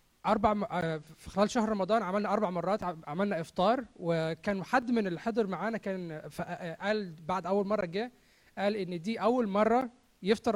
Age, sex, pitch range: 20-39, male, 165-215 Hz